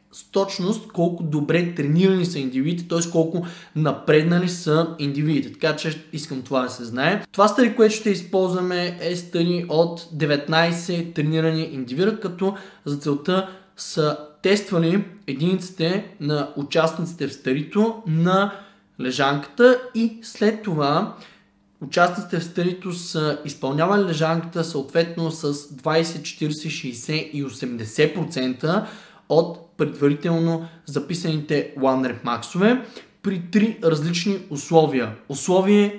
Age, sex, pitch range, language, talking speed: 20-39, male, 150-190 Hz, Bulgarian, 115 wpm